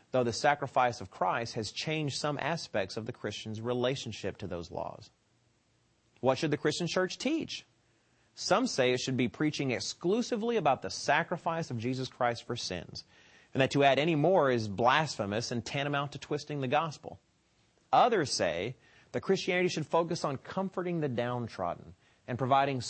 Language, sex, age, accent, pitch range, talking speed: English, male, 30-49, American, 115-155 Hz, 165 wpm